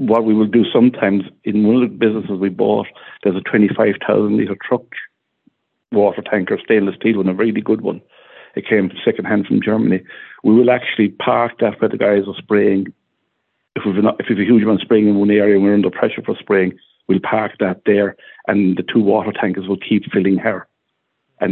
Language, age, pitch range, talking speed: English, 50-69, 100-110 Hz, 200 wpm